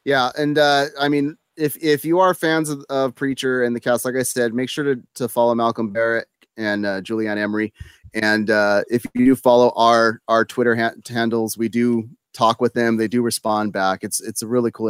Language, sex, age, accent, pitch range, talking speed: English, male, 30-49, American, 110-130 Hz, 220 wpm